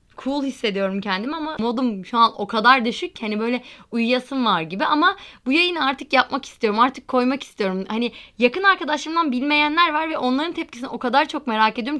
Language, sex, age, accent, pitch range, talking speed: Turkish, female, 10-29, native, 215-285 Hz, 190 wpm